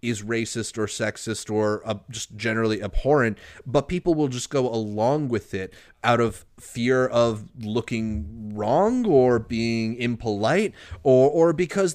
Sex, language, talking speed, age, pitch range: male, English, 145 wpm, 30-49, 110-135 Hz